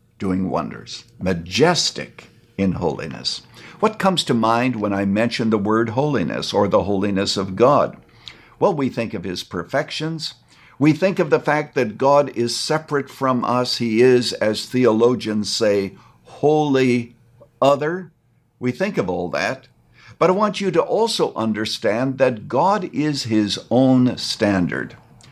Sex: male